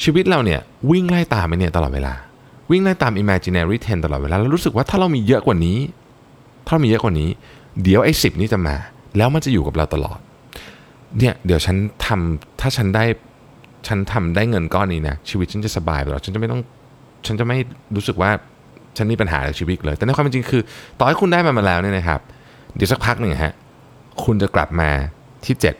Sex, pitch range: male, 90-130 Hz